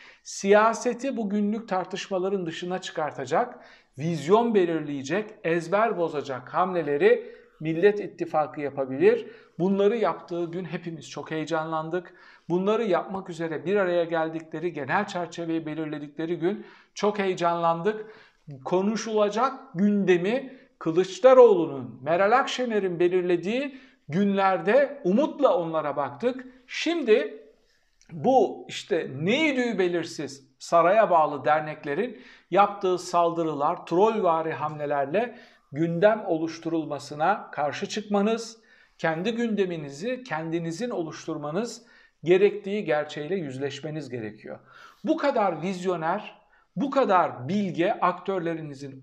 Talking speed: 90 wpm